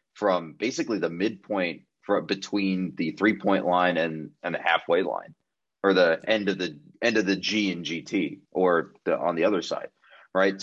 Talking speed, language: 175 wpm, English